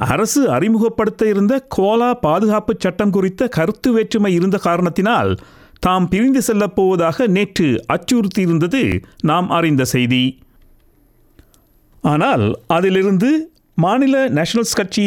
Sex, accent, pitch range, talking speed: male, native, 165-225 Hz, 95 wpm